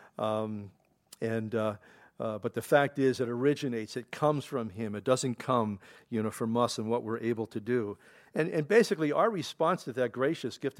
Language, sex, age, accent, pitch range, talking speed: English, male, 50-69, American, 125-150 Hz, 195 wpm